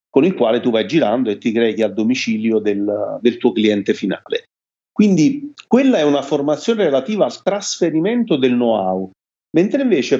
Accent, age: native, 40-59